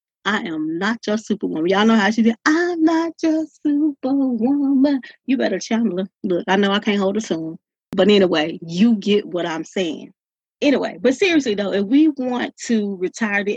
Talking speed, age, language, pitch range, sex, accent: 190 wpm, 30-49, English, 175-230 Hz, female, American